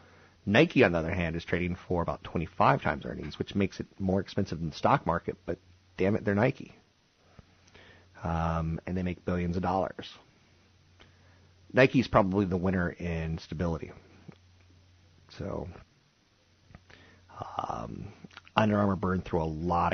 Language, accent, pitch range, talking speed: English, American, 85-95 Hz, 140 wpm